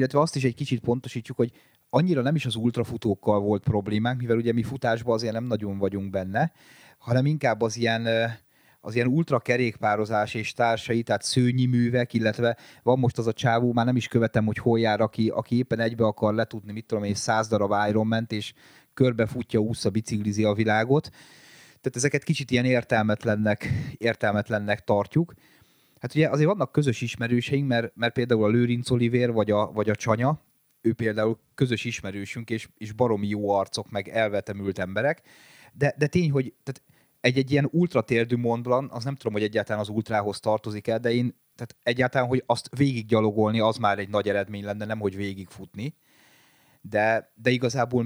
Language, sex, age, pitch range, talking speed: Hungarian, male, 30-49, 110-125 Hz, 170 wpm